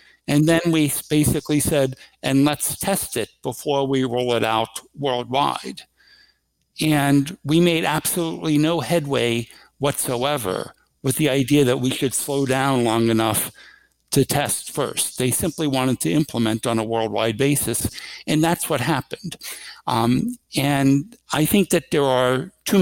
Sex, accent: male, American